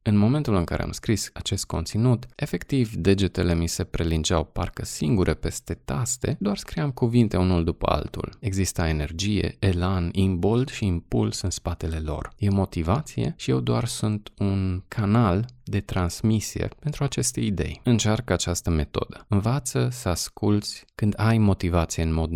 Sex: male